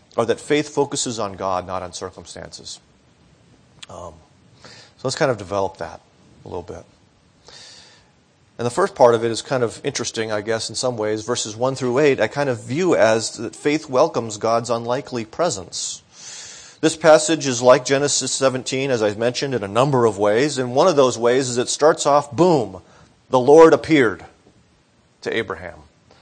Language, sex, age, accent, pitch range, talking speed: English, male, 40-59, American, 115-150 Hz, 180 wpm